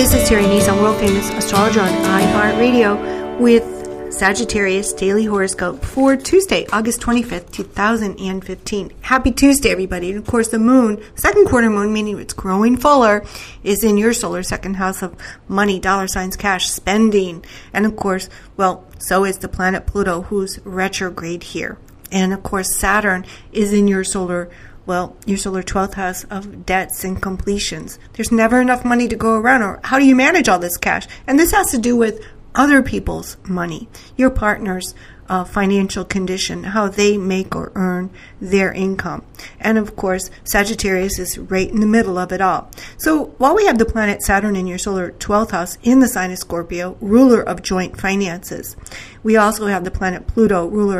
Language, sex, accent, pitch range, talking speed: English, female, American, 185-220 Hz, 175 wpm